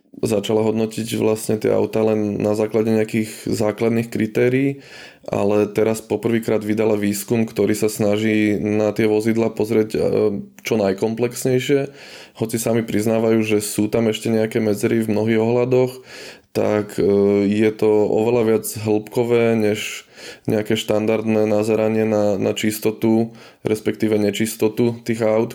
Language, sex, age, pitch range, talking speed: Slovak, male, 20-39, 105-110 Hz, 125 wpm